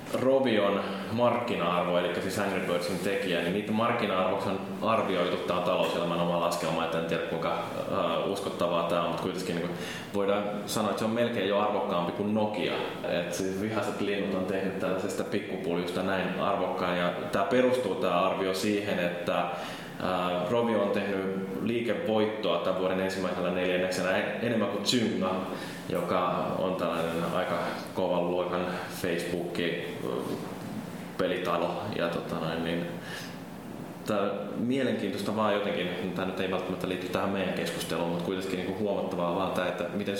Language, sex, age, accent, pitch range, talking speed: Finnish, male, 20-39, native, 90-100 Hz, 140 wpm